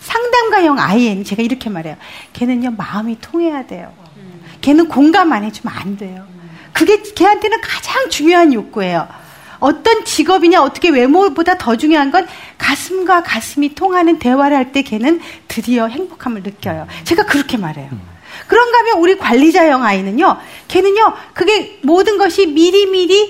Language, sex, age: Korean, female, 40-59